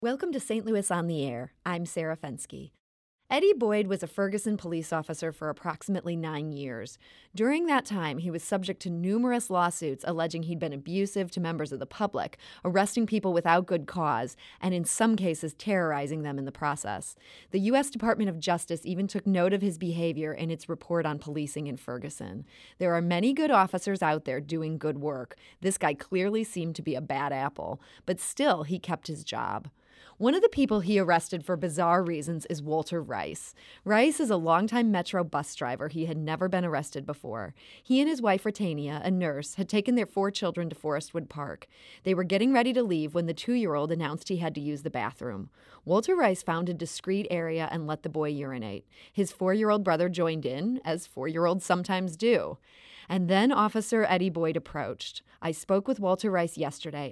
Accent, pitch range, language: American, 155-195 Hz, English